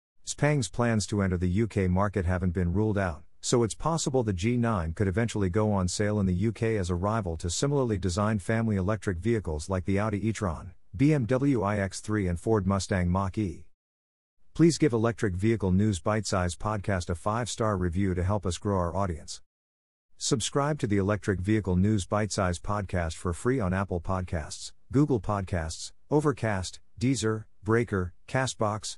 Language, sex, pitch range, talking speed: English, male, 90-110 Hz, 165 wpm